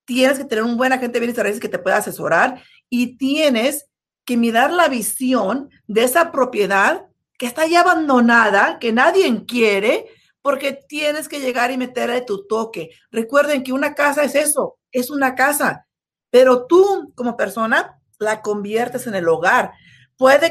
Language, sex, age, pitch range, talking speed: Spanish, female, 40-59, 215-275 Hz, 160 wpm